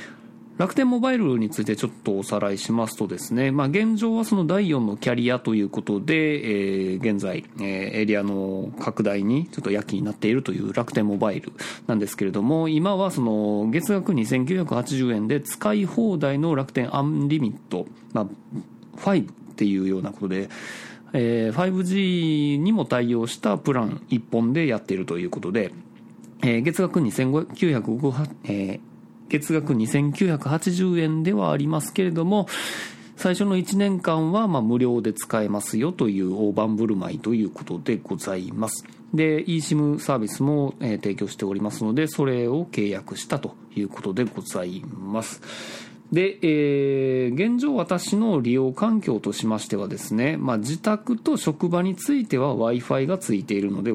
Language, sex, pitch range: Japanese, male, 110-180 Hz